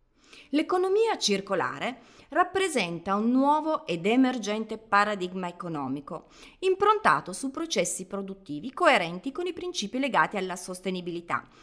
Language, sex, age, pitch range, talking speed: Italian, female, 30-49, 175-280 Hz, 105 wpm